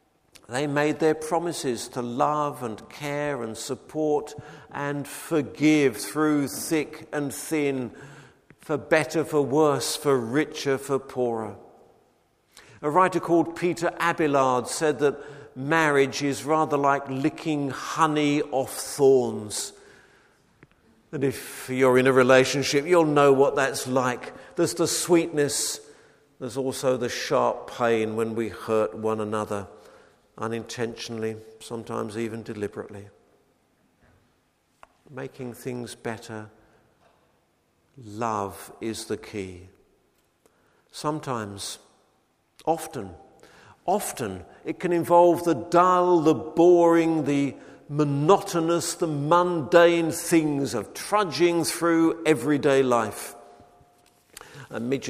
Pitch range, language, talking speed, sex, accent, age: 120-155 Hz, English, 105 wpm, male, British, 50-69